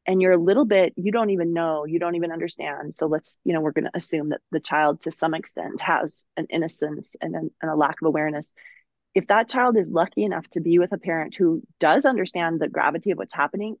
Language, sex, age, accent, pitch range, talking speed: English, female, 30-49, American, 165-225 Hz, 240 wpm